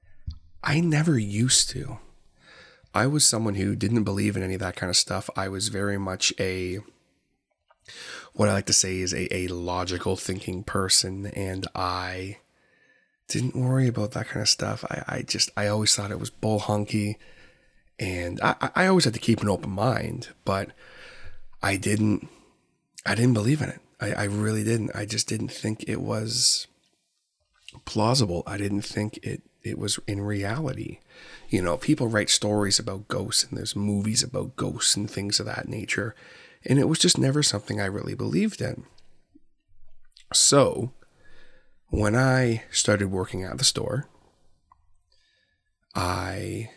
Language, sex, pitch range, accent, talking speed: English, male, 95-120 Hz, American, 160 wpm